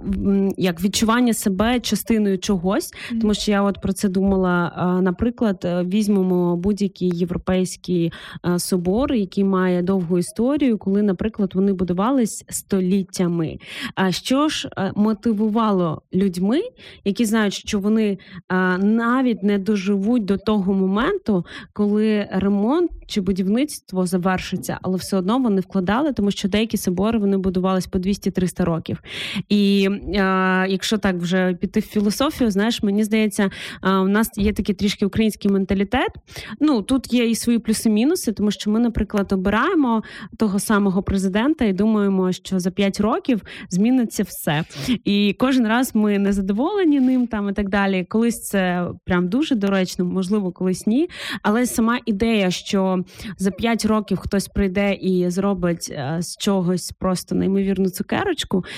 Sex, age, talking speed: female, 20-39, 135 wpm